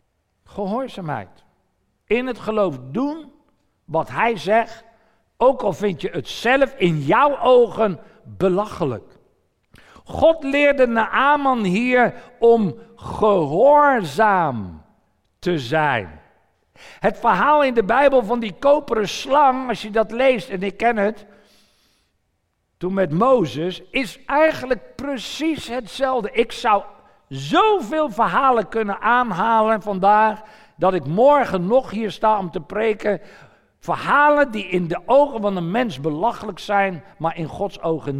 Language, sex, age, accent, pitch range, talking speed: Dutch, male, 60-79, Dutch, 175-245 Hz, 125 wpm